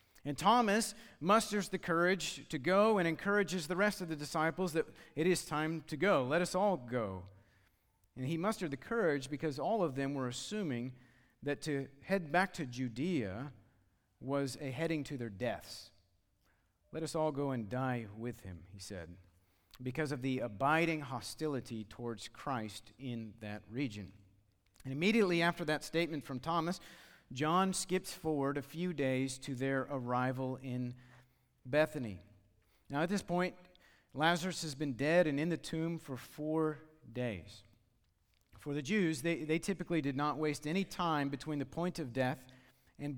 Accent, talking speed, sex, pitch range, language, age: American, 165 wpm, male, 120-165 Hz, English, 40-59